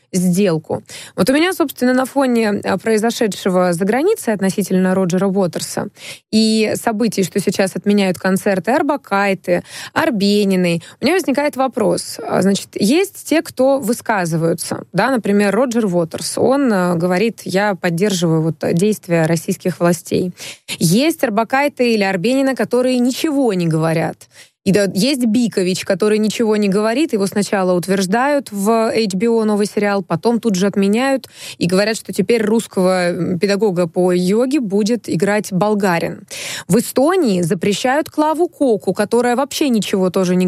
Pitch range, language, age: 190-240 Hz, Russian, 20-39